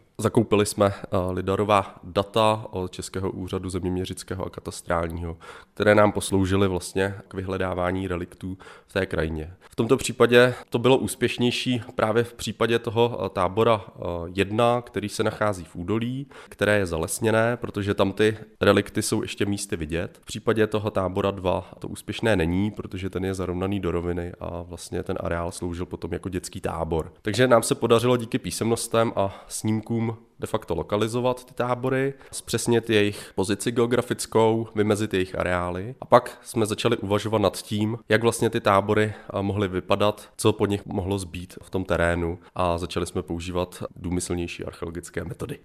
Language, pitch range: Czech, 90-115 Hz